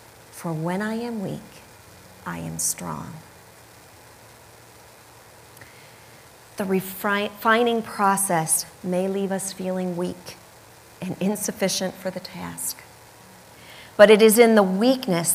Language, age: English, 40-59